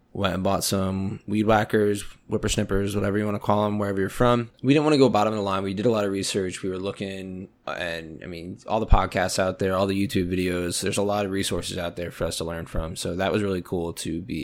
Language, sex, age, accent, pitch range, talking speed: English, male, 20-39, American, 90-105 Hz, 270 wpm